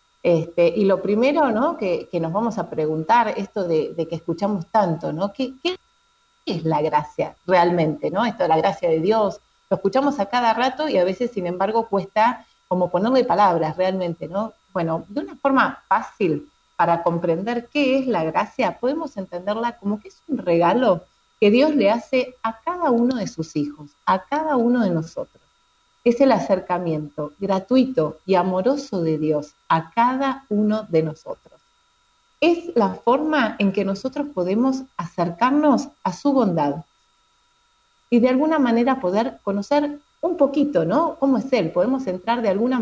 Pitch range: 180-280 Hz